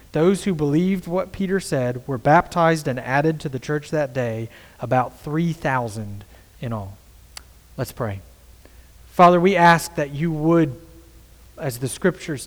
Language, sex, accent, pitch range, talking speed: English, male, American, 115-155 Hz, 145 wpm